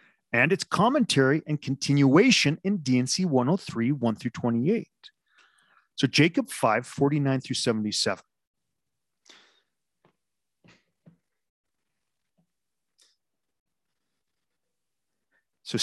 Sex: male